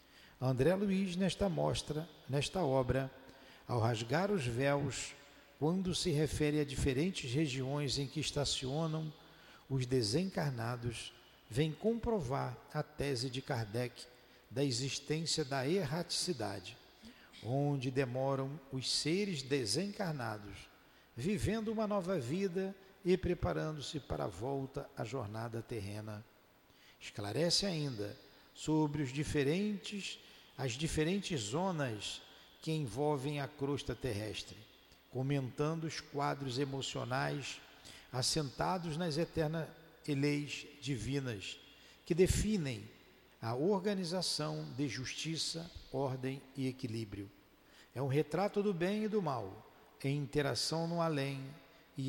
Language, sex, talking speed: Portuguese, male, 105 wpm